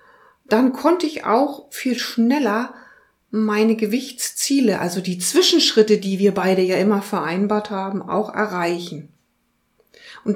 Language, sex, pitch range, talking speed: German, female, 180-235 Hz, 120 wpm